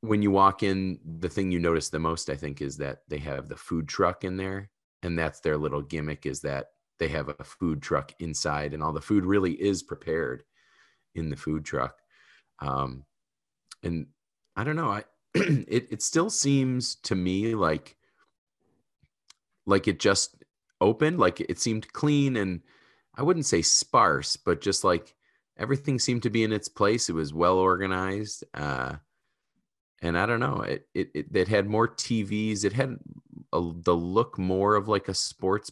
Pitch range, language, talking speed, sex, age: 80-110 Hz, English, 180 wpm, male, 30-49